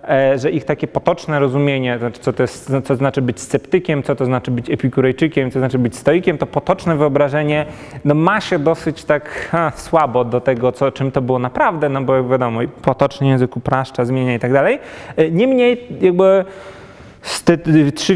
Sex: male